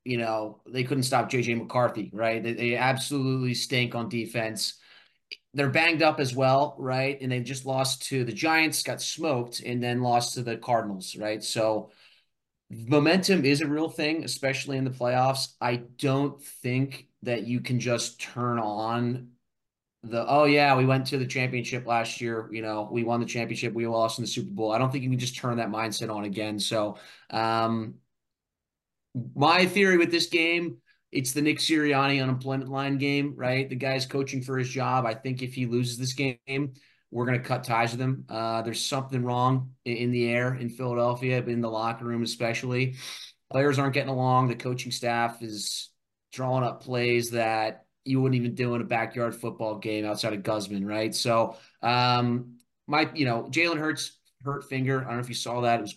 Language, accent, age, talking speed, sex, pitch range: English, American, 30-49, 195 wpm, male, 115-135 Hz